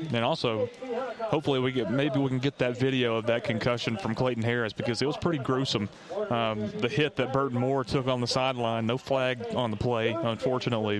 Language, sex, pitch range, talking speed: English, male, 115-140 Hz, 205 wpm